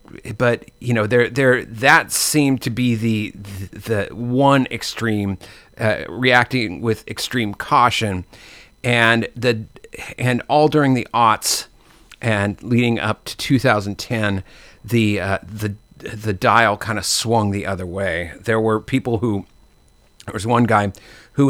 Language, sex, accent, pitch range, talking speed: English, male, American, 105-125 Hz, 140 wpm